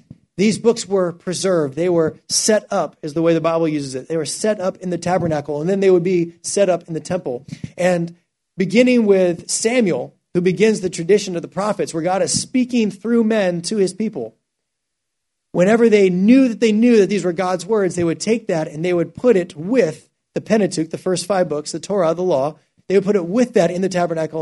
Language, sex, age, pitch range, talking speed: English, male, 30-49, 165-205 Hz, 225 wpm